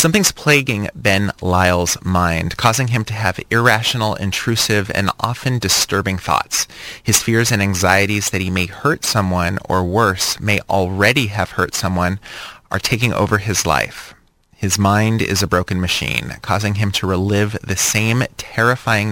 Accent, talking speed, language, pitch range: American, 155 wpm, English, 95-115 Hz